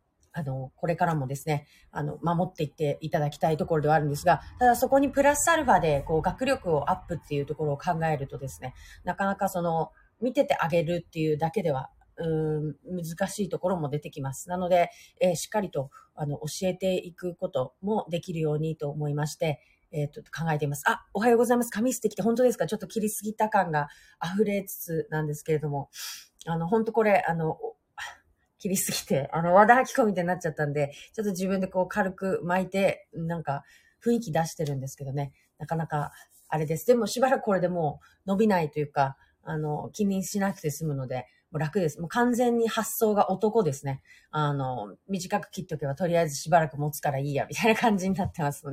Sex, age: female, 40-59